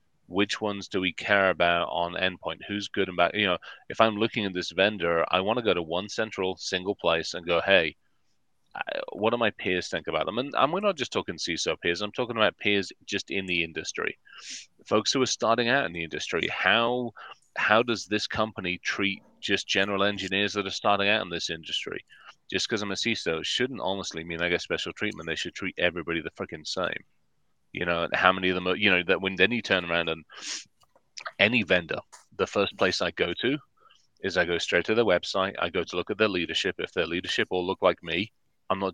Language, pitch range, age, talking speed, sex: English, 85-100 Hz, 30-49, 220 wpm, male